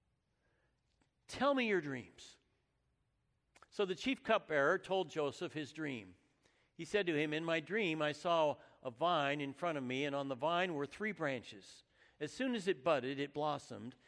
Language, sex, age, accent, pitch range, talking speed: English, male, 60-79, American, 135-210 Hz, 175 wpm